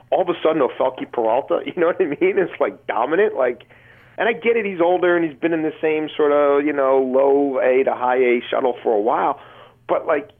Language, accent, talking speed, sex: English, American, 240 wpm, male